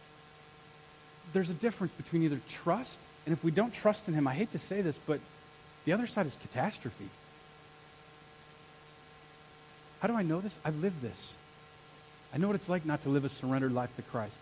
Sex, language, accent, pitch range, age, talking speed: male, English, American, 135-175 Hz, 40-59, 185 wpm